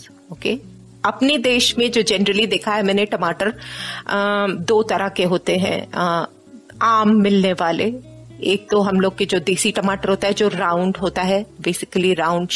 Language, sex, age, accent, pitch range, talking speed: Hindi, female, 30-49, native, 190-240 Hz, 160 wpm